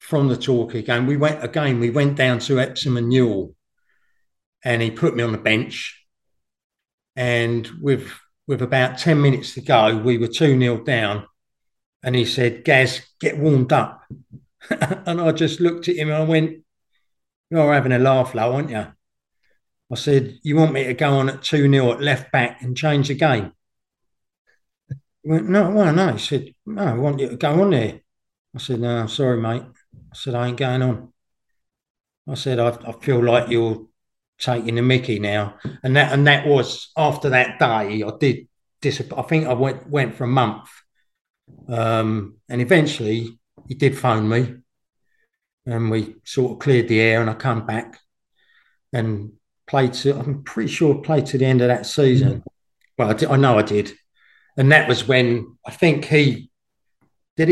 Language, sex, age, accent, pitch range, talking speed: English, male, 50-69, British, 120-145 Hz, 185 wpm